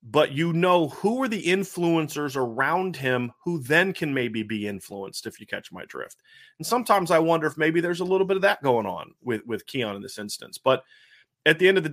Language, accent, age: English, American, 30-49